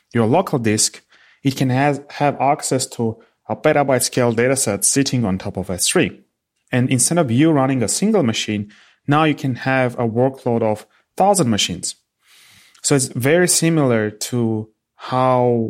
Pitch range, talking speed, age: 110-140 Hz, 155 wpm, 30-49